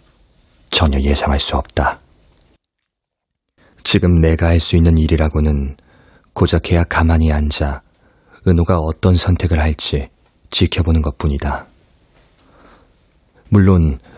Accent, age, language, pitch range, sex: native, 40-59, Korean, 75-85 Hz, male